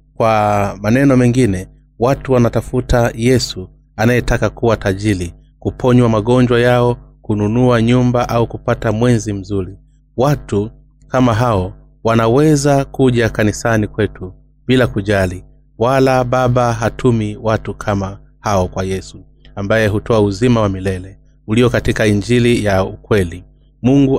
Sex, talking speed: male, 115 wpm